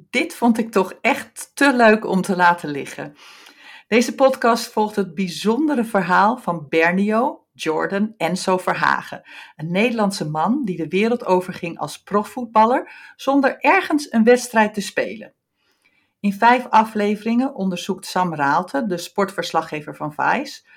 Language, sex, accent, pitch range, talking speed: Dutch, female, Dutch, 170-225 Hz, 135 wpm